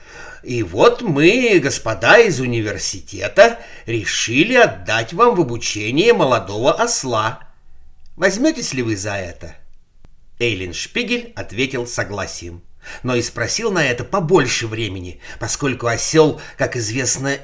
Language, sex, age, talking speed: Russian, male, 50-69, 115 wpm